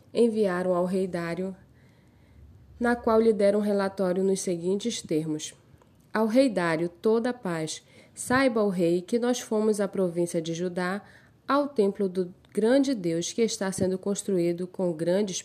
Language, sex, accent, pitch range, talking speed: Portuguese, female, Brazilian, 170-225 Hz, 150 wpm